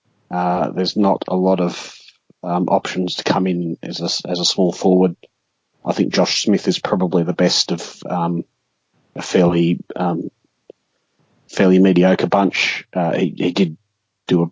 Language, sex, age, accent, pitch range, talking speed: English, male, 30-49, Australian, 85-95 Hz, 160 wpm